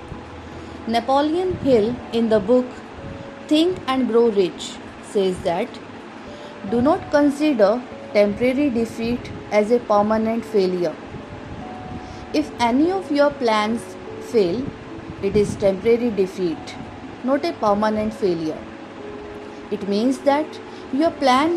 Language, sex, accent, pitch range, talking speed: Hindi, female, native, 210-280 Hz, 110 wpm